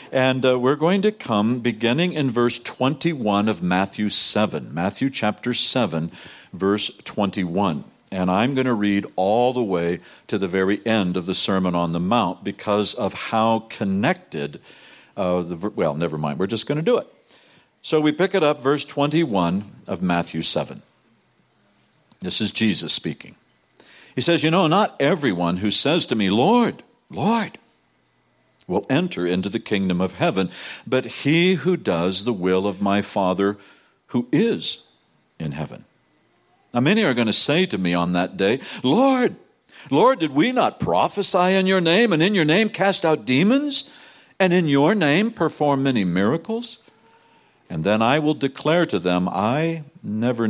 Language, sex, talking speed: English, male, 165 wpm